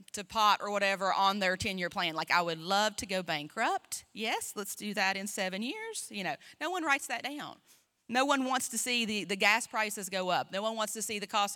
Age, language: 30-49, English